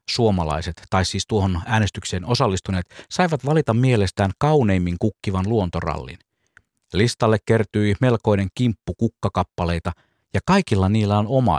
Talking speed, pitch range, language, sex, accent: 115 wpm, 90-120 Hz, Finnish, male, native